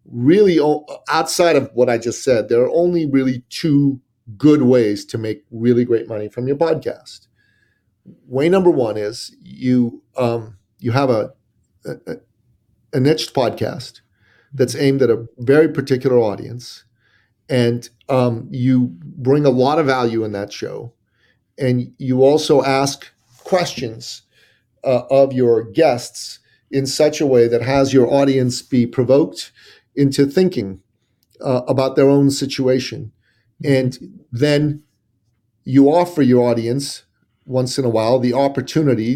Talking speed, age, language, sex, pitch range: 140 wpm, 40-59, English, male, 120-140 Hz